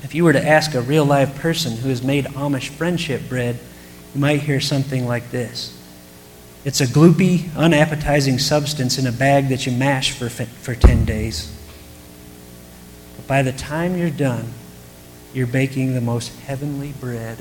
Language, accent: English, American